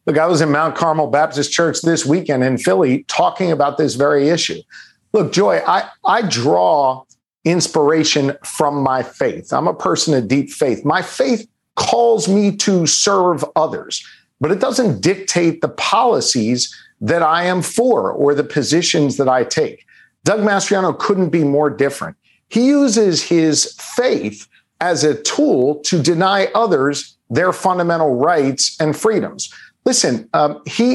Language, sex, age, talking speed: English, male, 50-69, 155 wpm